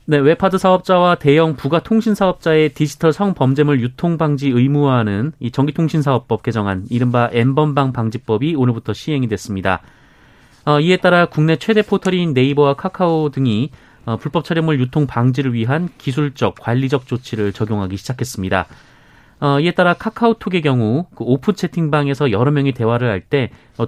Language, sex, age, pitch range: Korean, male, 30-49, 120-165 Hz